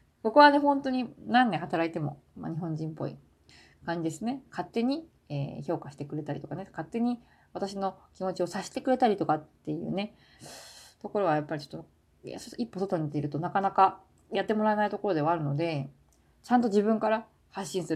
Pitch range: 160-245 Hz